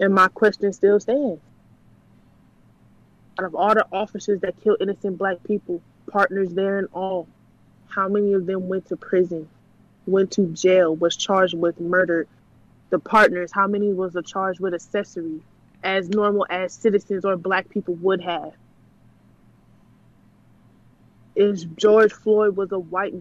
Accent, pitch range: American, 185-215 Hz